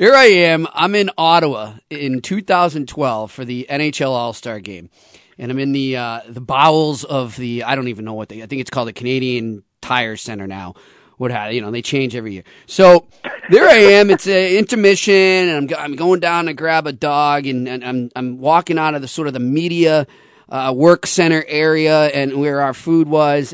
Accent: American